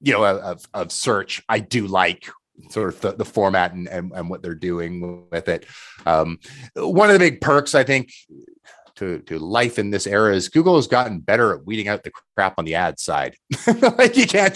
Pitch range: 90-145 Hz